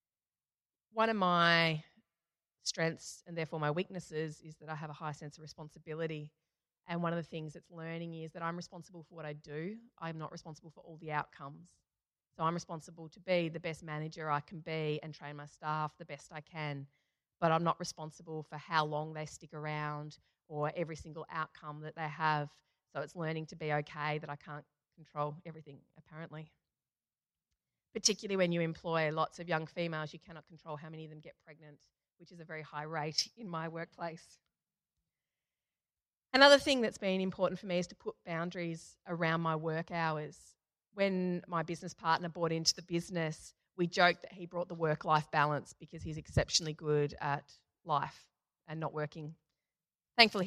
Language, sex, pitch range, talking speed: English, female, 155-170 Hz, 185 wpm